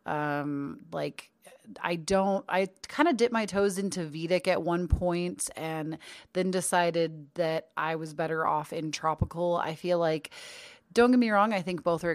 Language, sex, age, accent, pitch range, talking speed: English, female, 30-49, American, 155-205 Hz, 180 wpm